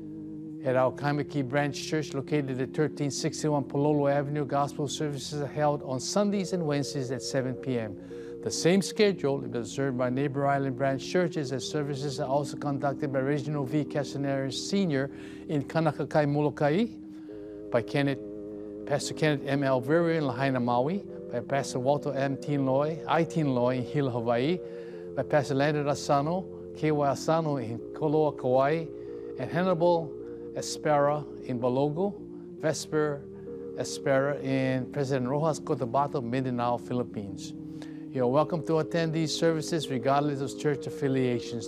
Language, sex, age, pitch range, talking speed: English, male, 50-69, 130-155 Hz, 135 wpm